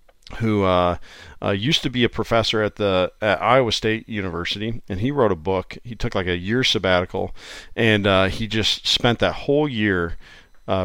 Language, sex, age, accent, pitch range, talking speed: English, male, 40-59, American, 90-105 Hz, 185 wpm